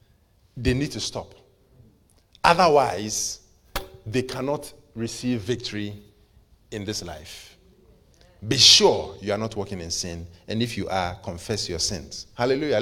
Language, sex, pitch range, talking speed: English, male, 100-135 Hz, 130 wpm